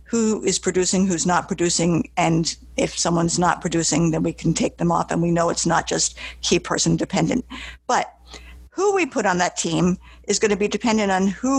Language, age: English, 50-69